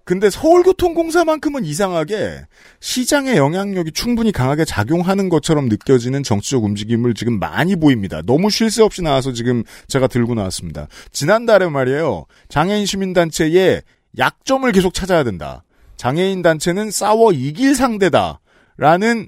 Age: 40-59